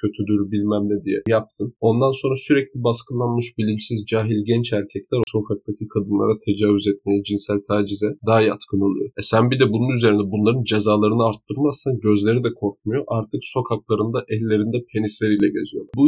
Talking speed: 150 wpm